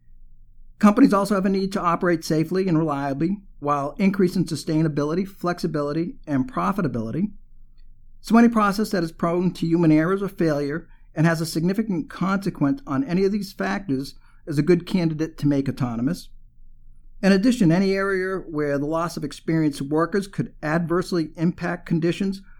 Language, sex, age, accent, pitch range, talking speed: English, male, 50-69, American, 145-180 Hz, 155 wpm